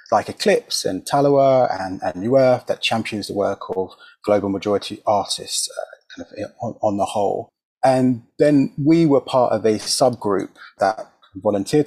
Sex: male